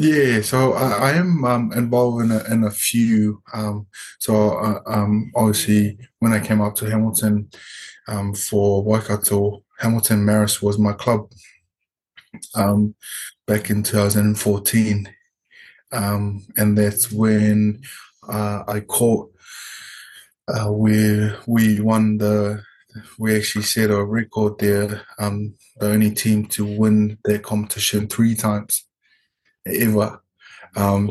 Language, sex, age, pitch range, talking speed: English, male, 20-39, 105-110 Hz, 125 wpm